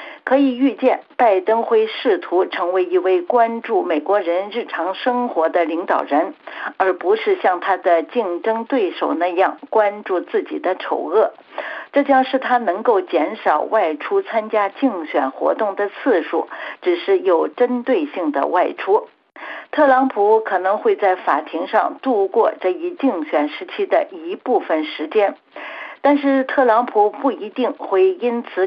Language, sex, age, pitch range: Chinese, female, 60-79, 190-285 Hz